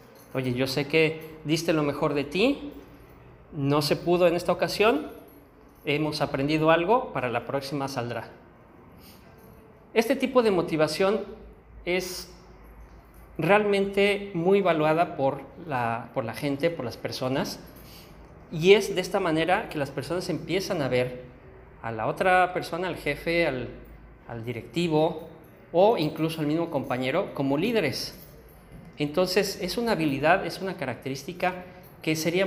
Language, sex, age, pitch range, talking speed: Spanish, male, 40-59, 135-180 Hz, 135 wpm